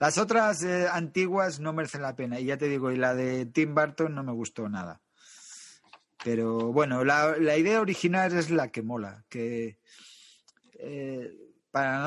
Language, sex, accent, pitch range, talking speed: Spanish, male, Spanish, 135-165 Hz, 175 wpm